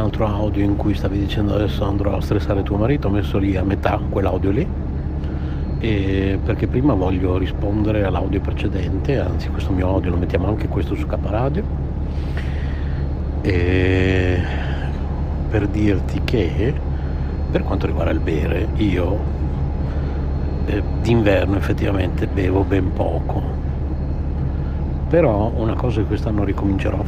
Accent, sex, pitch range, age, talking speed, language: native, male, 70-100 Hz, 60-79, 130 wpm, Italian